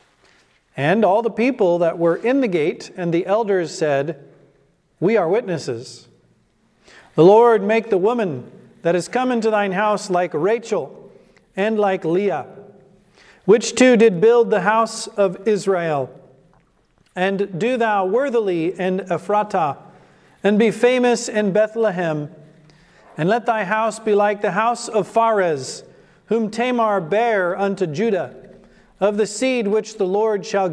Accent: American